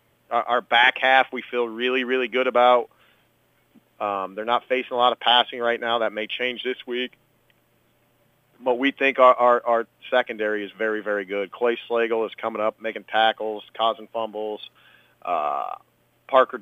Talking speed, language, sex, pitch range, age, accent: 165 wpm, English, male, 110-125 Hz, 40-59, American